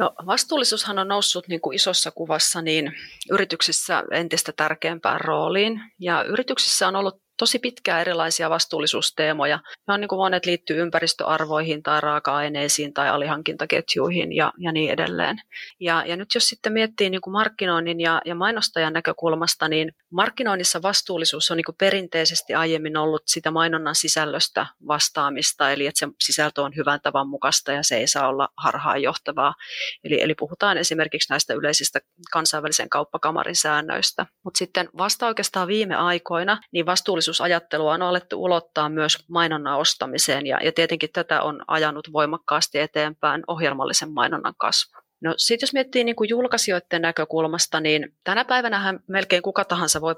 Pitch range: 155-190 Hz